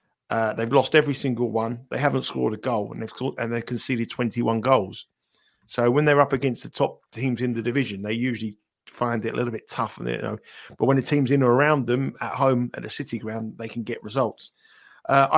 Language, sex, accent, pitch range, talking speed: English, male, British, 115-140 Hz, 240 wpm